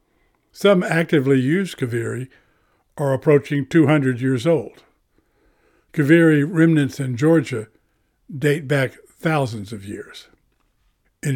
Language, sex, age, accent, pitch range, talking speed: English, male, 60-79, American, 130-155 Hz, 100 wpm